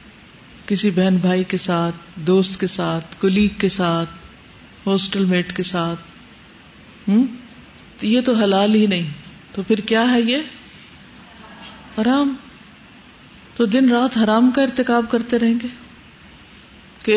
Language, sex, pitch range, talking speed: Urdu, female, 185-225 Hz, 125 wpm